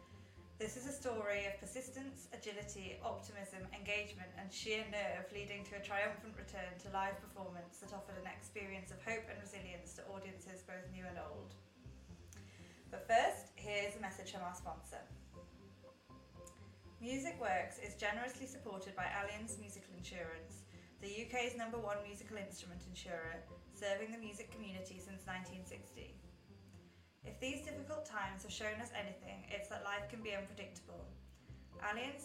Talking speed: 145 wpm